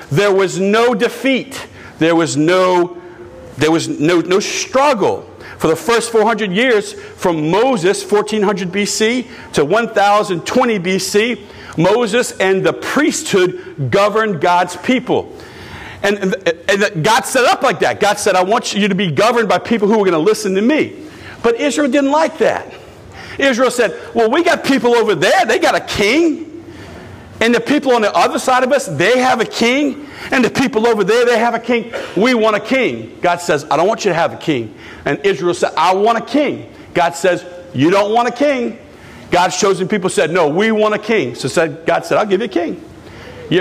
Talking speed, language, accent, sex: 195 wpm, English, American, male